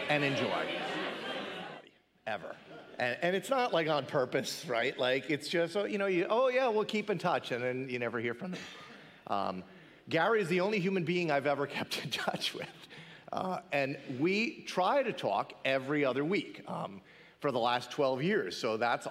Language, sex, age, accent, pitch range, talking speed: English, male, 40-59, American, 125-180 Hz, 190 wpm